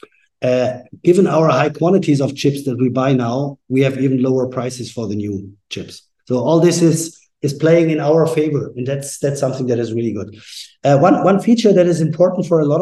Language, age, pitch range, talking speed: English, 50-69, 130-155 Hz, 220 wpm